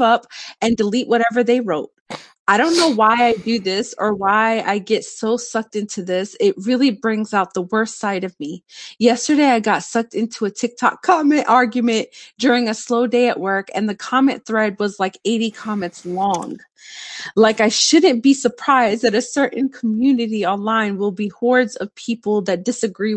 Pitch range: 205-245 Hz